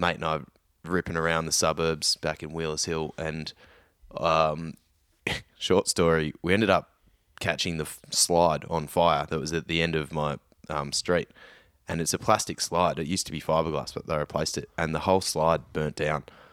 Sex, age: male, 10-29